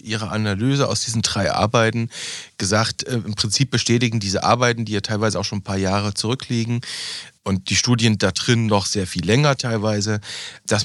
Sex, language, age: male, German, 40-59